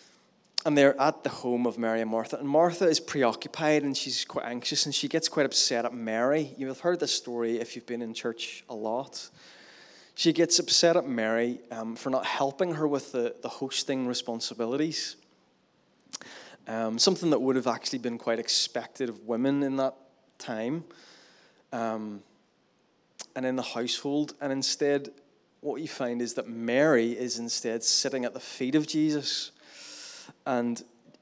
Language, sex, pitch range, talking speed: English, male, 115-145 Hz, 165 wpm